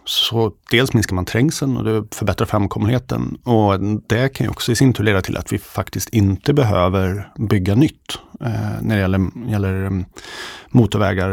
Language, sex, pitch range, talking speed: Swedish, male, 105-120 Hz, 170 wpm